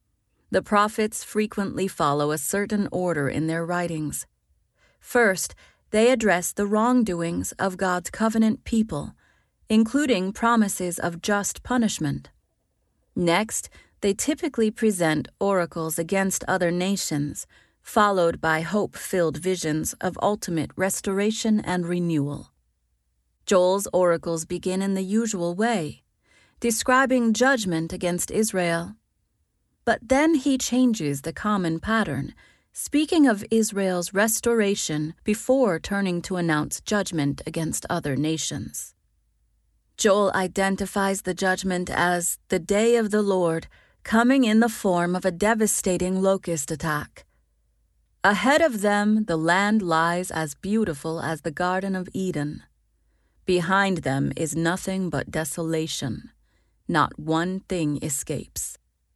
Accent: American